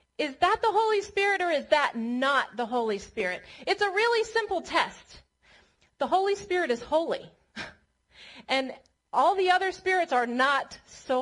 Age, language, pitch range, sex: 30-49, English, 270-365 Hz, female